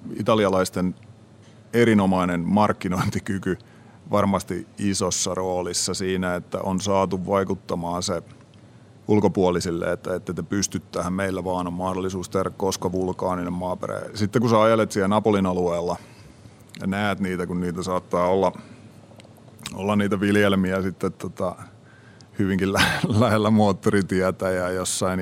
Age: 30-49